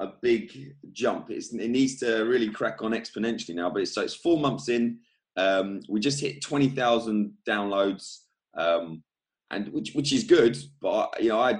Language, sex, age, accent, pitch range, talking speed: English, male, 20-39, British, 90-115 Hz, 195 wpm